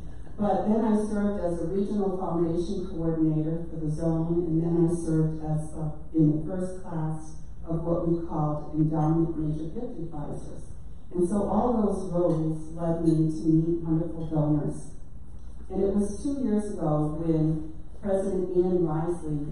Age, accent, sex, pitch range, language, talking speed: 40-59, American, female, 155-180 Hz, English, 155 wpm